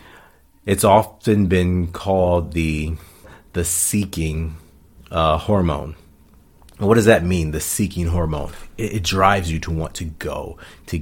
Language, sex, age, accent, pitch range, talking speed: English, male, 30-49, American, 80-105 Hz, 135 wpm